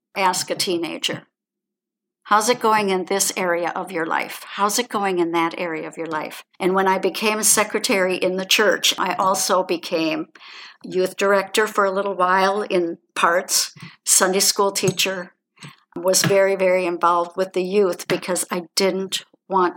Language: English